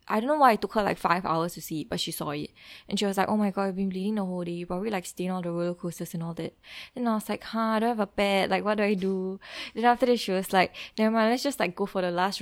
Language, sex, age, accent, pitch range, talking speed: English, female, 10-29, Malaysian, 175-205 Hz, 350 wpm